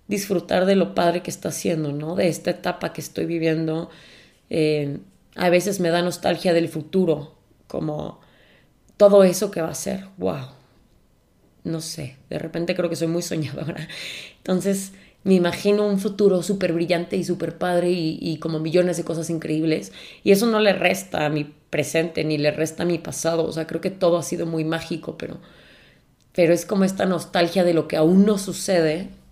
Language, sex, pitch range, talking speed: Spanish, female, 160-185 Hz, 185 wpm